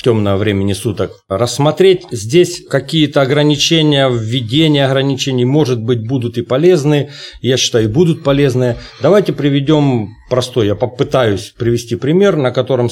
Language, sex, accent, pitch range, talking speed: Russian, male, native, 110-145 Hz, 125 wpm